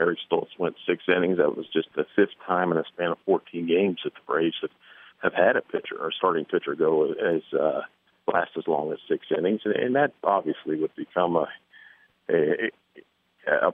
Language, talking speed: English, 195 wpm